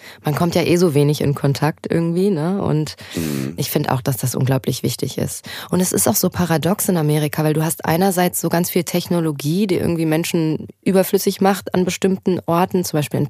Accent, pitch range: German, 155-195 Hz